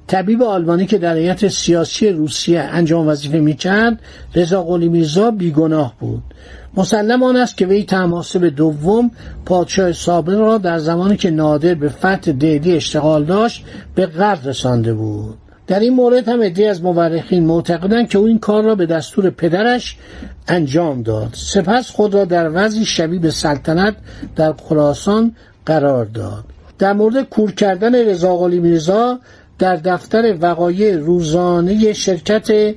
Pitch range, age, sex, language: 160-210 Hz, 60-79, male, Persian